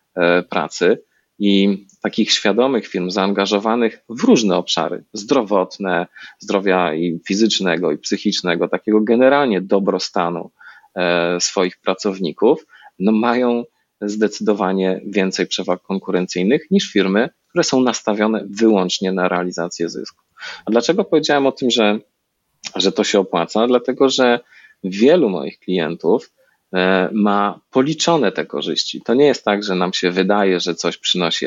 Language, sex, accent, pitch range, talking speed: Polish, male, native, 90-115 Hz, 125 wpm